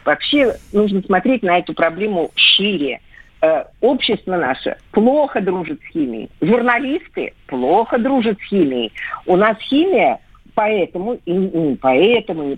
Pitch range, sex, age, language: 175-255 Hz, female, 50-69, Russian